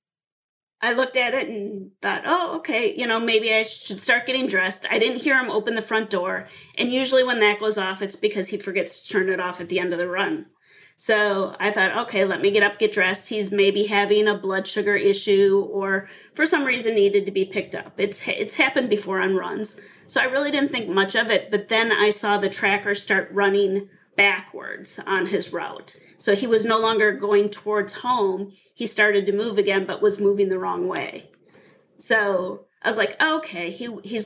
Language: English